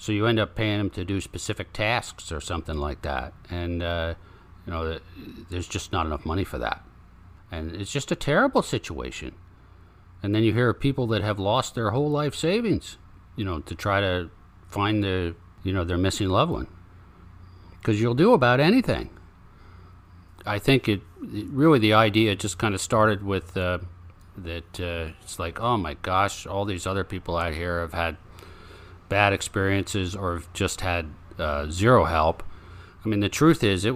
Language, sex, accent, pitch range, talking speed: English, male, American, 90-105 Hz, 180 wpm